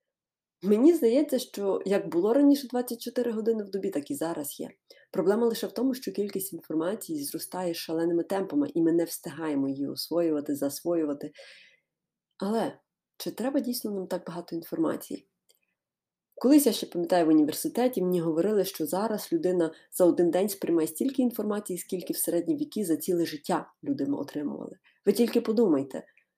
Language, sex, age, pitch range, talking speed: Ukrainian, female, 20-39, 170-245 Hz, 155 wpm